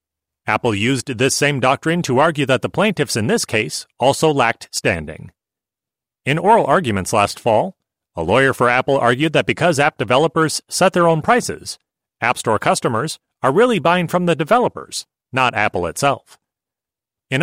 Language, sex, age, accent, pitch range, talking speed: English, male, 30-49, American, 120-165 Hz, 160 wpm